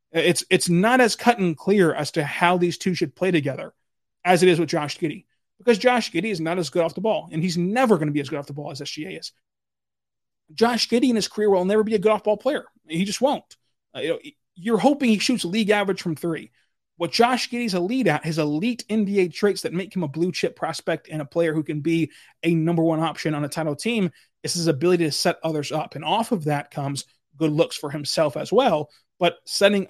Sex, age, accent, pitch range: male, 30-49, American, 155-195 Hz